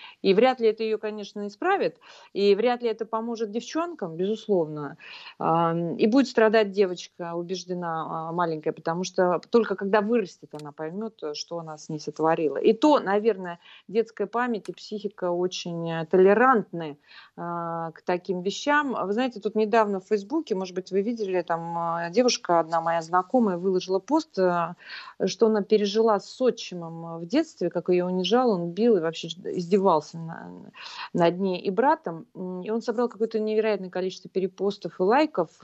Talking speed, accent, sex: 150 wpm, native, female